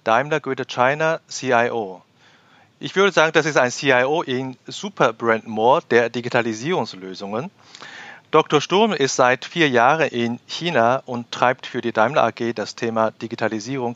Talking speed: 140 wpm